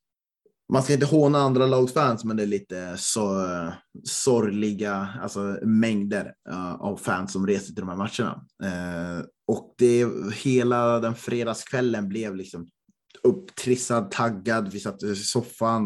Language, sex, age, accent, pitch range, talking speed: Swedish, male, 20-39, native, 100-130 Hz, 140 wpm